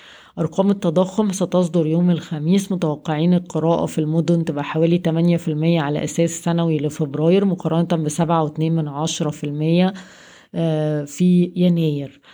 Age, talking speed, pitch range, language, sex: 20-39, 95 wpm, 160-180 Hz, Arabic, female